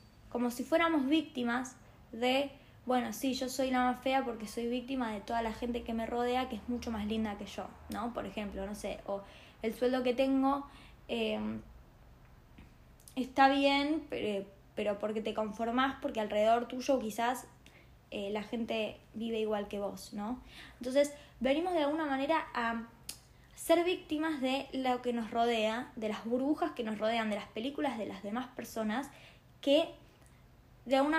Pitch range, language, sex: 225-275 Hz, Spanish, female